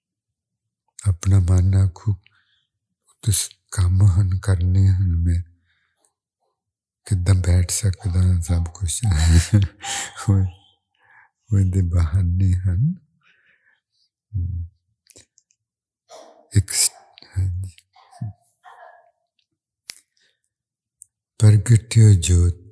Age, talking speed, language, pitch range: 60-79, 35 wpm, English, 95-120 Hz